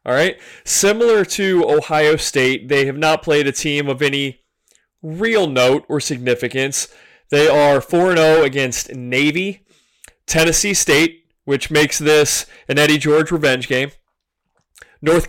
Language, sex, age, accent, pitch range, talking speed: English, male, 30-49, American, 135-170 Hz, 125 wpm